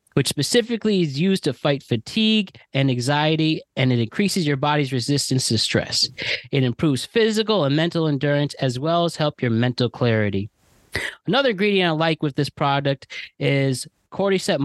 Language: English